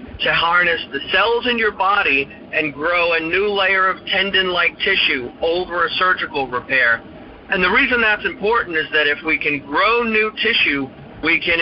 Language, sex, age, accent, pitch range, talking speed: English, male, 50-69, American, 145-175 Hz, 175 wpm